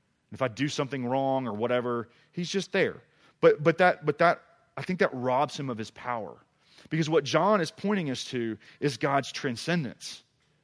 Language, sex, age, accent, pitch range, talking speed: English, male, 30-49, American, 125-155 Hz, 185 wpm